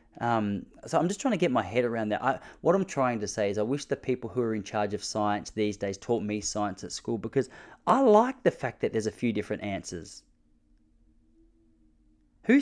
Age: 20-39